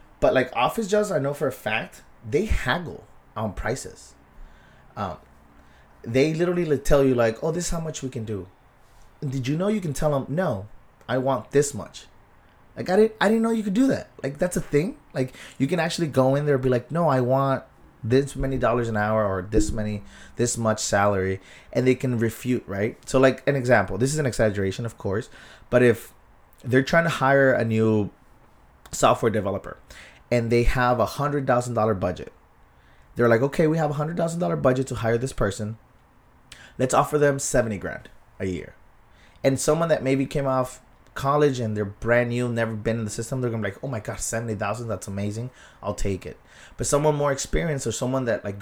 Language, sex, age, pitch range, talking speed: English, male, 20-39, 110-140 Hz, 205 wpm